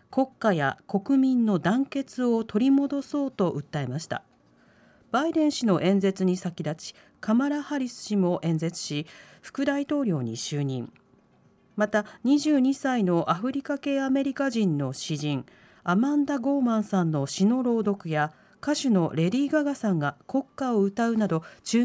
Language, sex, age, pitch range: Japanese, female, 40-59, 180-260 Hz